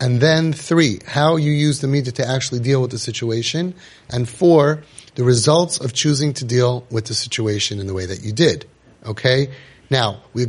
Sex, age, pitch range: male, 30-49, 115-155 Hz